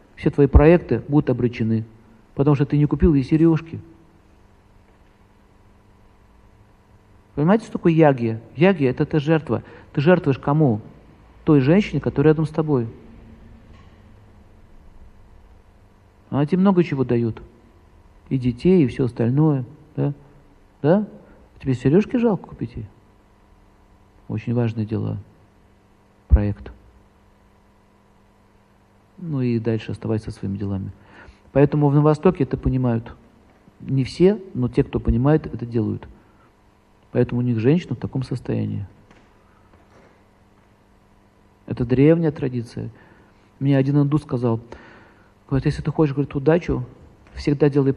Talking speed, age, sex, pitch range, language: 115 wpm, 50-69, male, 105-145 Hz, Russian